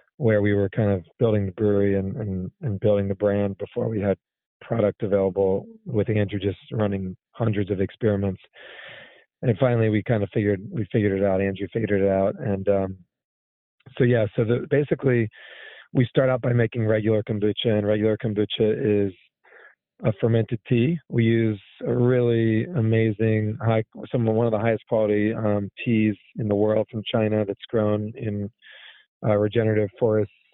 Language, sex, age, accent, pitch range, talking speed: English, male, 40-59, American, 105-120 Hz, 165 wpm